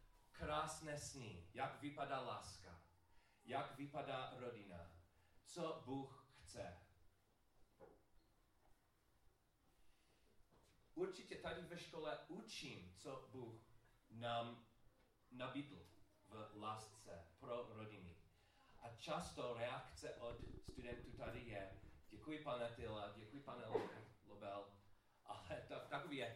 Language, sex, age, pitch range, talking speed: Czech, male, 40-59, 100-125 Hz, 90 wpm